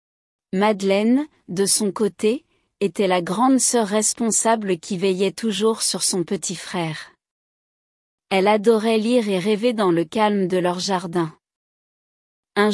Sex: female